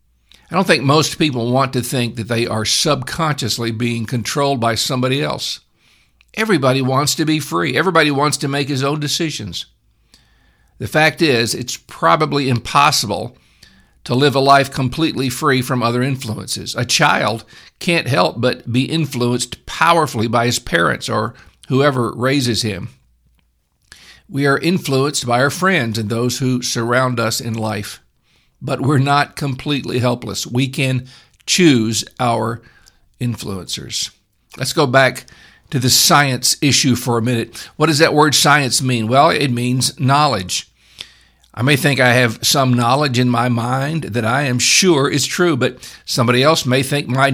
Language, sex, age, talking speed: English, male, 50-69, 155 wpm